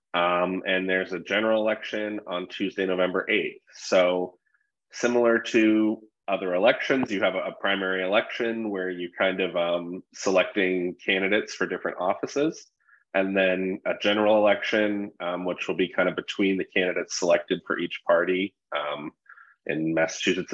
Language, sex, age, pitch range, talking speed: English, male, 30-49, 90-110 Hz, 150 wpm